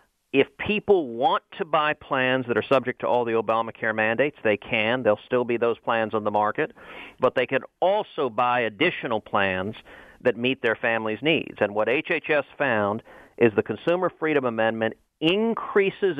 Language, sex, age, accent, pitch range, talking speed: English, male, 40-59, American, 120-155 Hz, 170 wpm